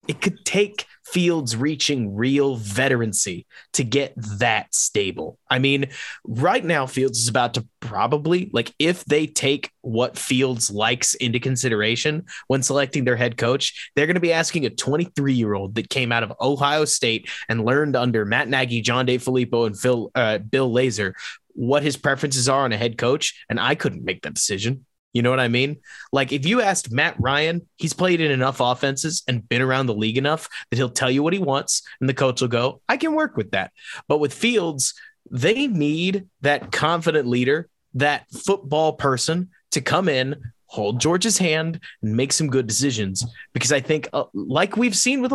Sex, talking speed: male, 190 wpm